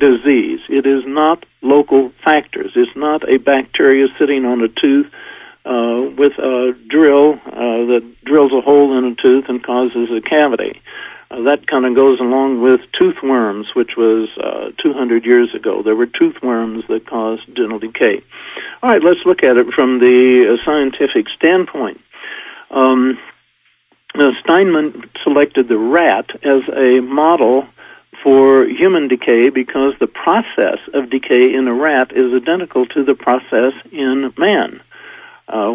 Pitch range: 125-145 Hz